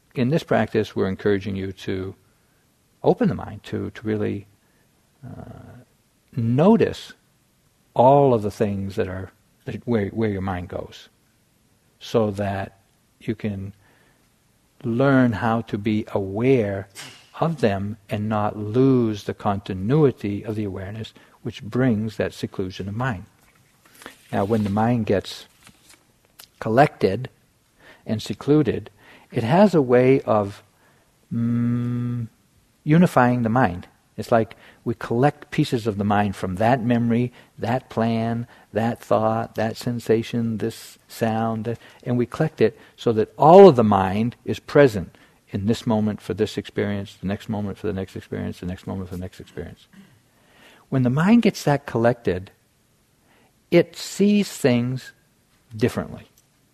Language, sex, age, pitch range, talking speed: English, male, 60-79, 105-125 Hz, 135 wpm